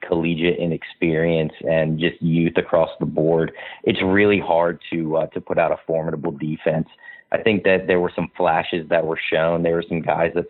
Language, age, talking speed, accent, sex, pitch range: English, 30-49, 195 wpm, American, male, 80-90 Hz